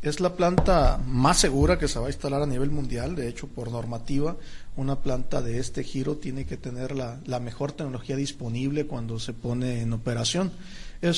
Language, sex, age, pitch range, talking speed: Spanish, male, 40-59, 125-150 Hz, 195 wpm